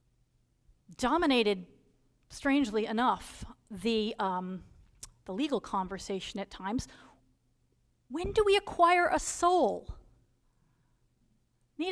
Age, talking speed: 40-59, 85 wpm